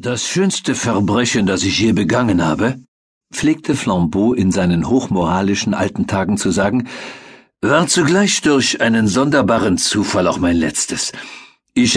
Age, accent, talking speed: 50-69, German, 135 wpm